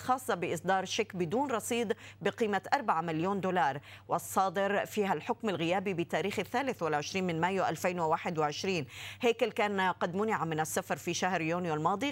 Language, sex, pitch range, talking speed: Arabic, female, 165-215 Hz, 145 wpm